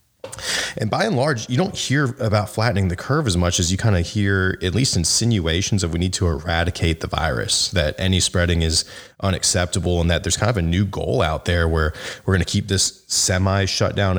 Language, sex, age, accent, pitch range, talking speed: English, male, 30-49, American, 85-100 Hz, 220 wpm